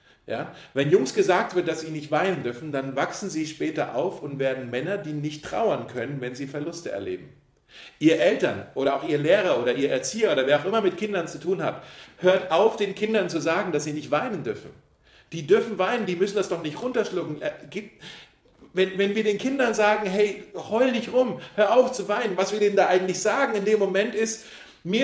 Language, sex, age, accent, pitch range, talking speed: German, male, 40-59, German, 160-215 Hz, 215 wpm